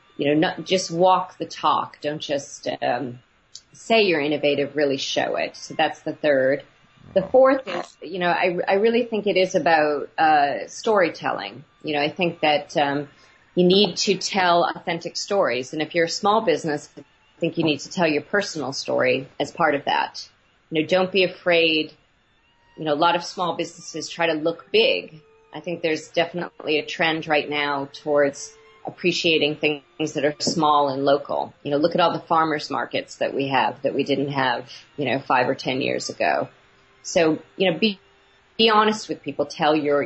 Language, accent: English, American